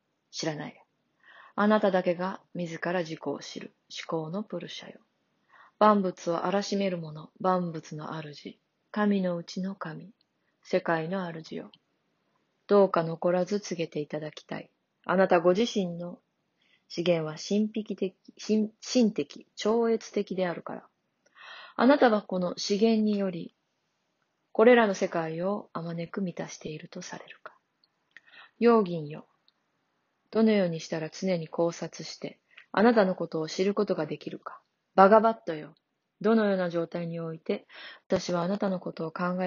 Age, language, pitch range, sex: 20-39, Japanese, 170-210 Hz, female